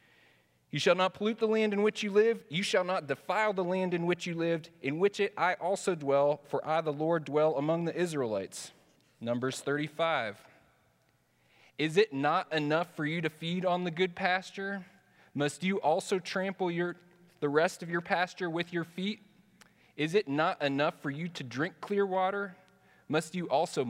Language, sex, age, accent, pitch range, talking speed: English, male, 30-49, American, 135-180 Hz, 185 wpm